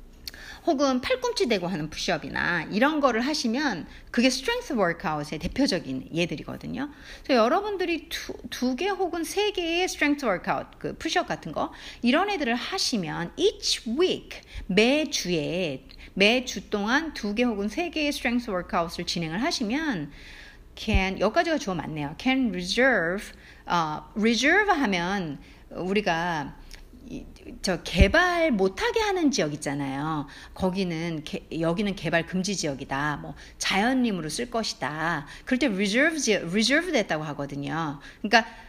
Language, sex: Korean, female